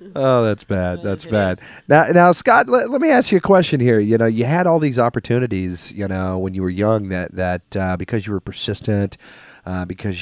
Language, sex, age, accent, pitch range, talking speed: English, male, 40-59, American, 95-125 Hz, 225 wpm